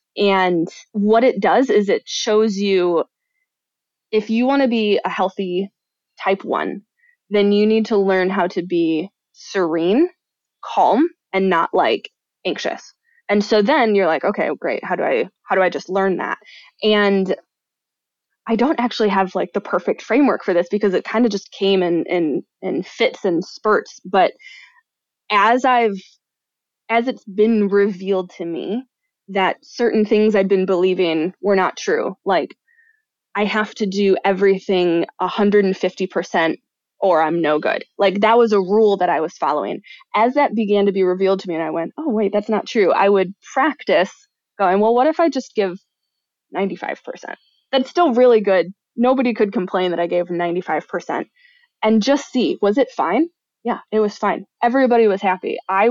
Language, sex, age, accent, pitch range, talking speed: English, female, 20-39, American, 185-240 Hz, 170 wpm